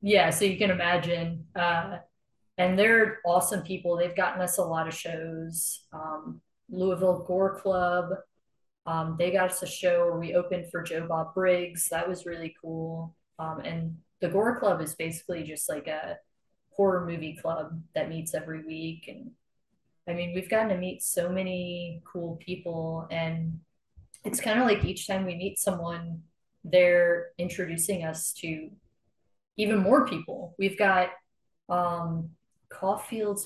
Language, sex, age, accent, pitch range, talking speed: English, female, 20-39, American, 165-195 Hz, 155 wpm